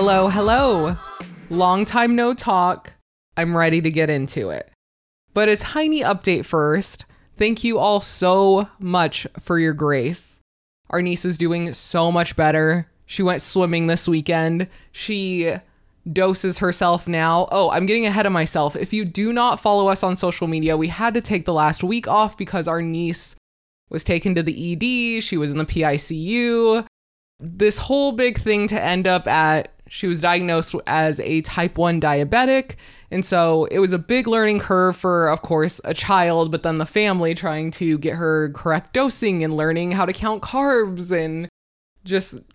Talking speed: 175 wpm